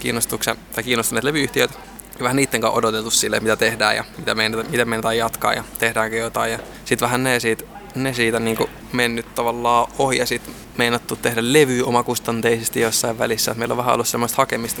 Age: 20-39